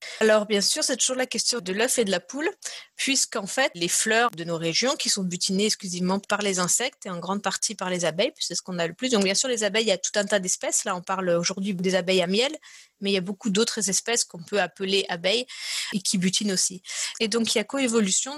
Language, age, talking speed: French, 30-49, 270 wpm